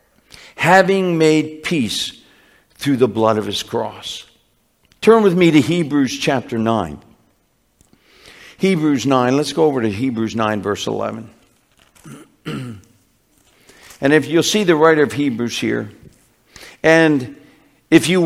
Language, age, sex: English, 60-79, male